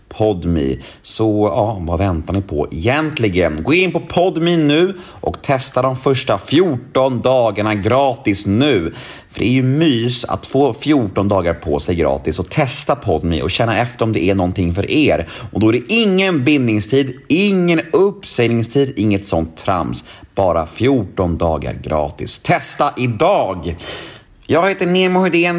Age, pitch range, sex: 30-49, 95-140 Hz, male